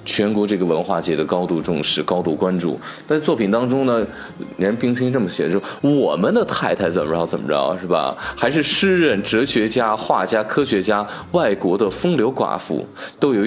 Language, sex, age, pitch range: Chinese, male, 20-39, 100-145 Hz